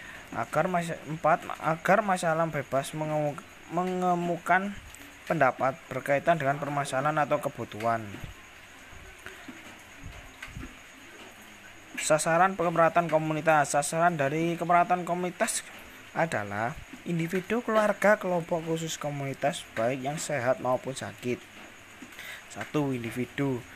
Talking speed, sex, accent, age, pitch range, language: 85 wpm, male, native, 20-39, 130-165 Hz, Indonesian